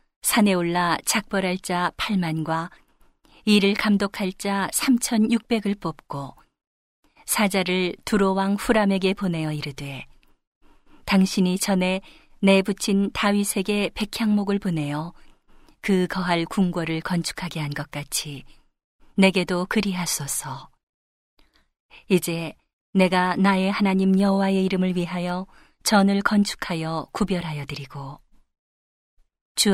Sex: female